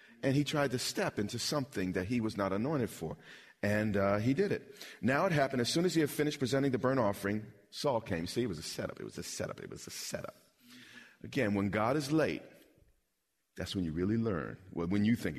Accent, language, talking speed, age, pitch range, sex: American, English, 230 wpm, 40-59, 95-130 Hz, male